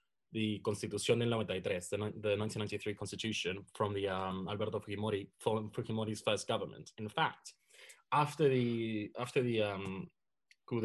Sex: male